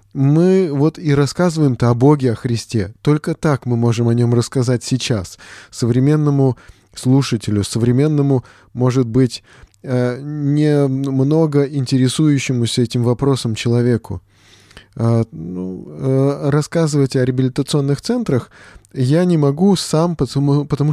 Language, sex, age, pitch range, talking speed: Russian, male, 20-39, 115-150 Hz, 105 wpm